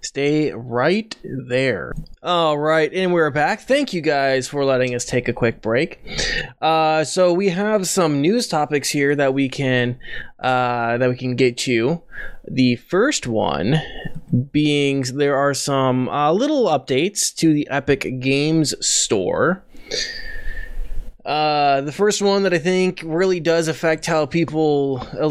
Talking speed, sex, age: 150 wpm, male, 20-39